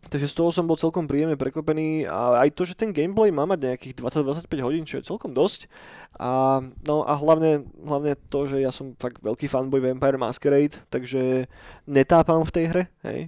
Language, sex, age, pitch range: Slovak, male, 20-39, 130-155 Hz